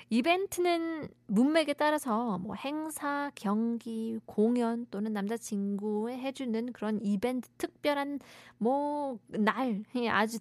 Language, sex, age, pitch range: Korean, female, 20-39, 190-270 Hz